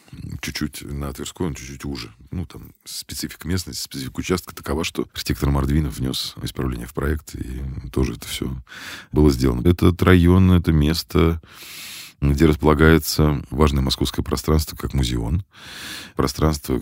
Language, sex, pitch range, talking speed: Russian, male, 65-80 Hz, 135 wpm